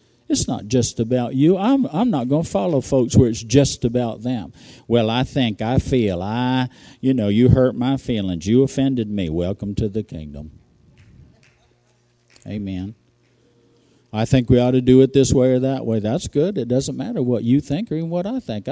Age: 50-69